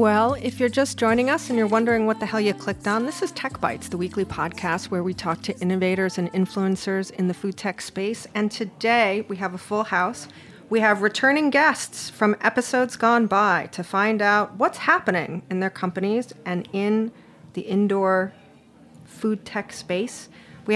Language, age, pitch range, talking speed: English, 40-59, 185-225 Hz, 190 wpm